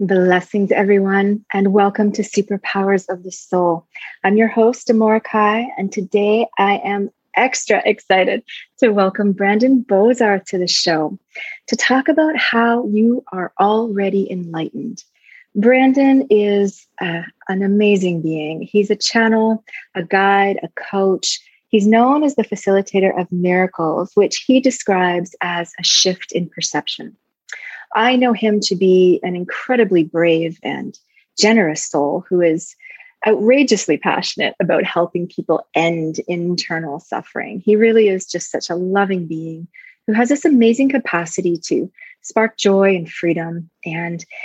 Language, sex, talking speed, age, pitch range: English, female, 140 wpm, 30-49, 175-220 Hz